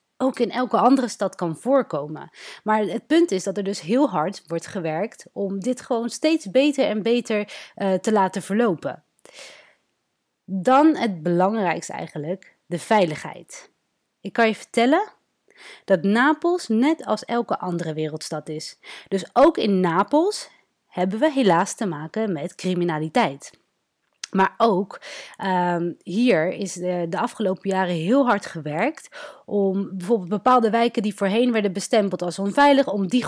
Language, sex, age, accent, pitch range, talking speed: Dutch, female, 30-49, Dutch, 195-255 Hz, 150 wpm